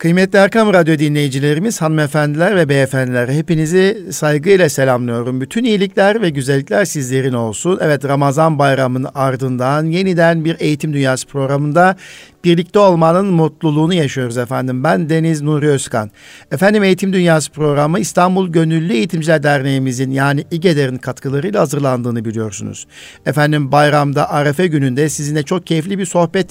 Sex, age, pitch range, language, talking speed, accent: male, 60-79, 140-175 Hz, Turkish, 125 wpm, native